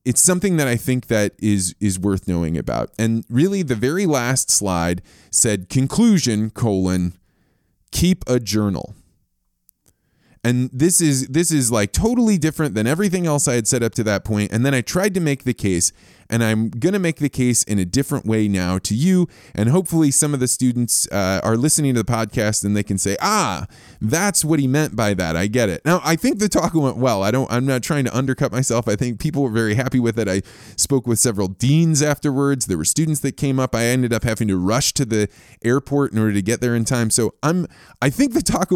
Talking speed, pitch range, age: 225 wpm, 105-145 Hz, 20-39